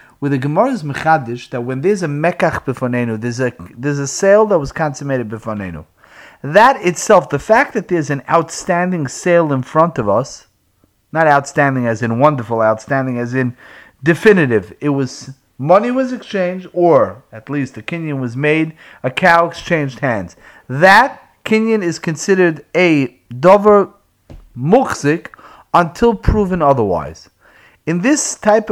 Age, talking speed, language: 30-49, 150 wpm, English